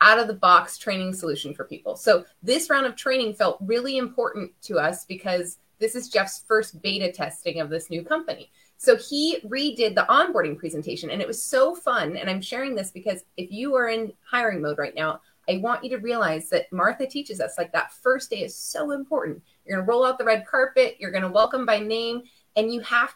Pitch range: 190-255 Hz